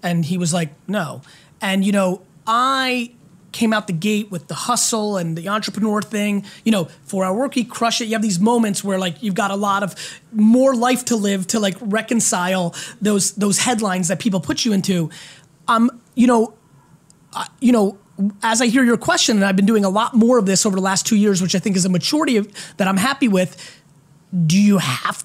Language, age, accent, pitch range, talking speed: English, 20-39, American, 195-245 Hz, 220 wpm